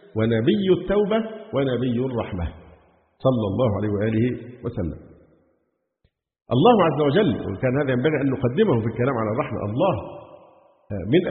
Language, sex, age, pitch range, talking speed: Arabic, male, 50-69, 110-150 Hz, 120 wpm